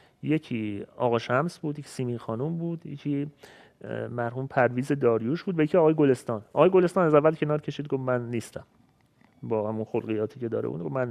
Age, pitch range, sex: 30-49, 120-180 Hz, male